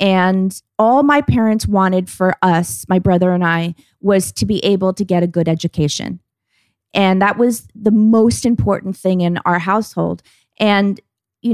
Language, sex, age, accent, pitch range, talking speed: English, female, 30-49, American, 185-235 Hz, 165 wpm